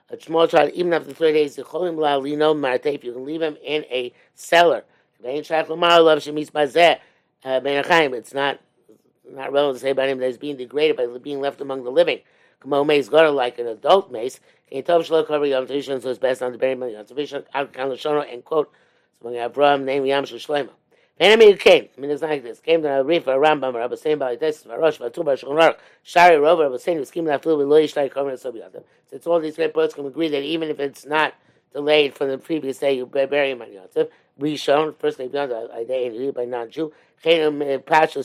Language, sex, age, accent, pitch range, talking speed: English, male, 50-69, American, 135-160 Hz, 165 wpm